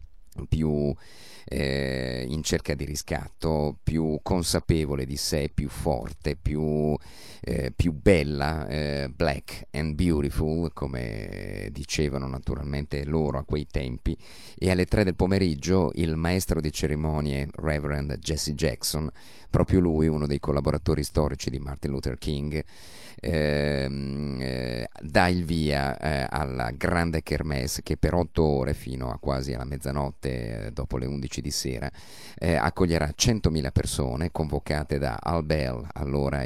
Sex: male